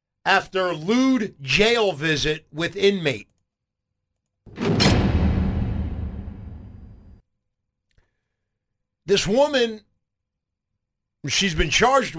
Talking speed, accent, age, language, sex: 60 wpm, American, 50-69, English, male